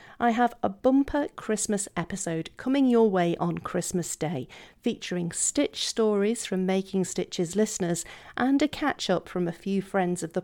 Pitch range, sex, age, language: 175-230 Hz, female, 40-59, English